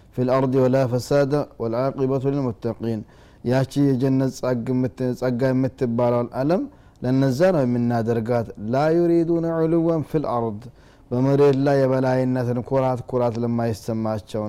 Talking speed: 110 wpm